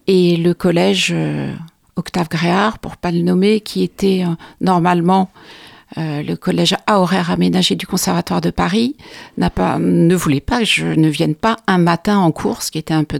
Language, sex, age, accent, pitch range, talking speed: French, female, 60-79, French, 165-200 Hz, 200 wpm